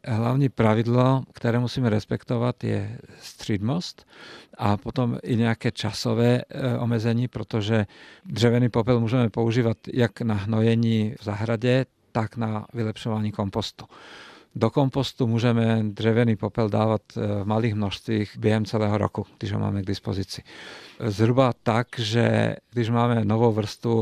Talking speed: 125 wpm